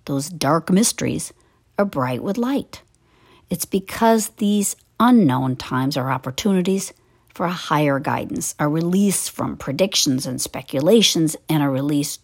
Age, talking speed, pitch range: 50-69, 130 wpm, 130-180 Hz